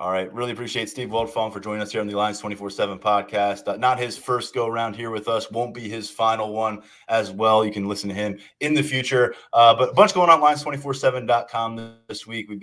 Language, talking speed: English, 240 wpm